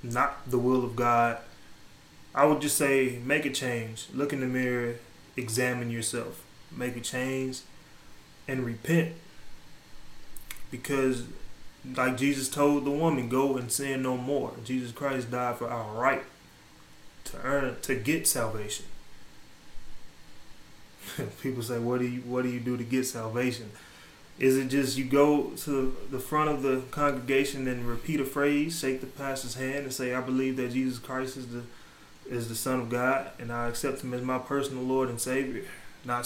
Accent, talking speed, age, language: American, 165 wpm, 20-39, English